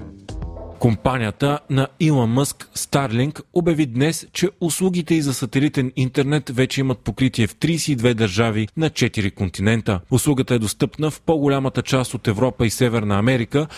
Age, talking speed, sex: 30-49, 145 wpm, male